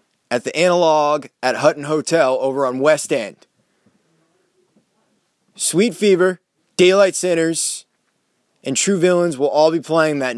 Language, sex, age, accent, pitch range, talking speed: English, male, 20-39, American, 145-180 Hz, 125 wpm